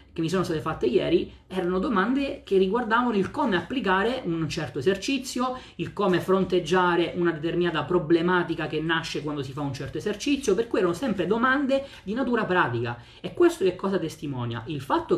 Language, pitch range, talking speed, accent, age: Italian, 150-195 Hz, 180 wpm, native, 30-49